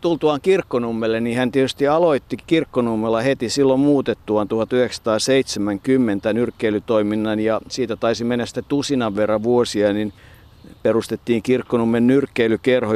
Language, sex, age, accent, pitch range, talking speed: Finnish, male, 50-69, native, 105-125 Hz, 105 wpm